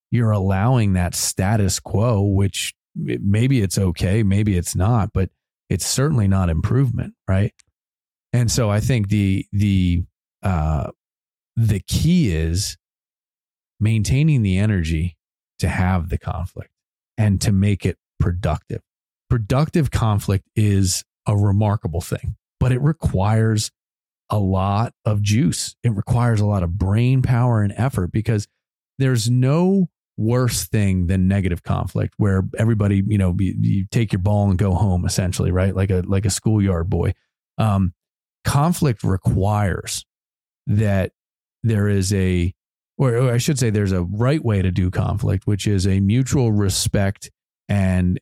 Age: 30-49